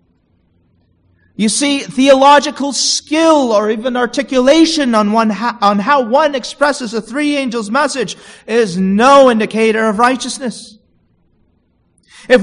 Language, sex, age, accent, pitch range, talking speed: English, male, 40-59, American, 190-260 Hz, 115 wpm